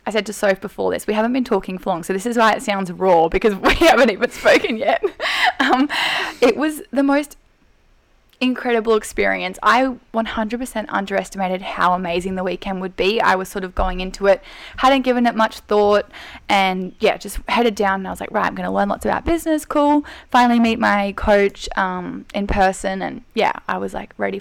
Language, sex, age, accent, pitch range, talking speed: English, female, 10-29, Australian, 195-255 Hz, 205 wpm